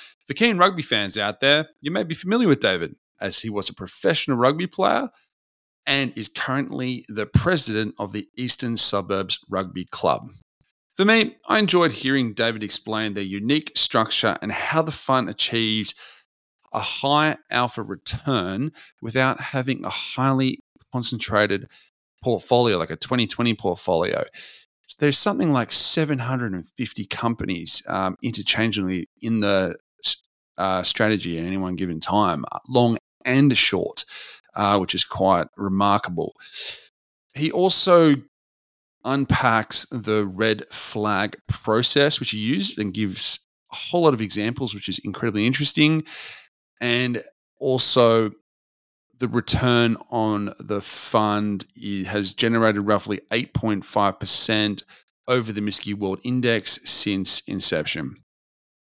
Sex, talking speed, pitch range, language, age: male, 125 wpm, 100-135 Hz, English, 30-49